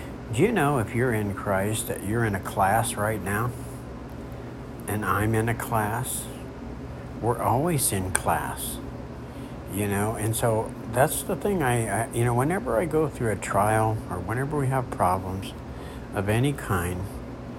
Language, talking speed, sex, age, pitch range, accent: English, 165 wpm, male, 60-79, 105-125 Hz, American